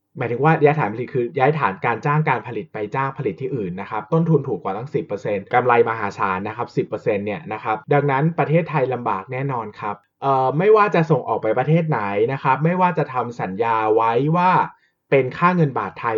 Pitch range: 115-155 Hz